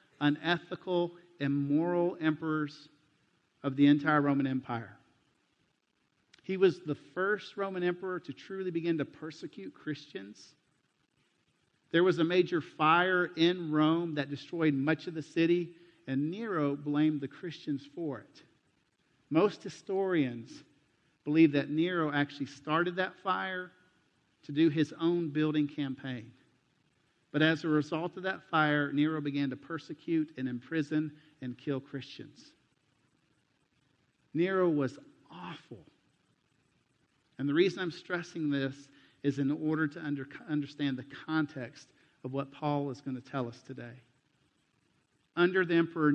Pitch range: 140-170 Hz